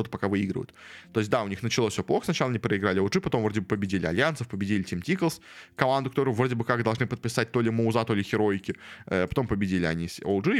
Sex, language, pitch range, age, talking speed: male, Russian, 100-130 Hz, 20-39, 225 wpm